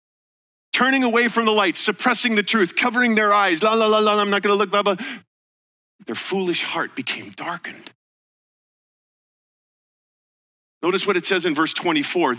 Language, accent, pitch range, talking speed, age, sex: English, American, 145-225 Hz, 165 wpm, 40-59, male